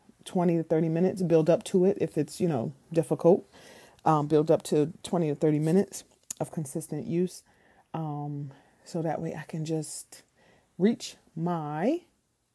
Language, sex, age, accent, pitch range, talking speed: English, female, 30-49, American, 150-185 Hz, 160 wpm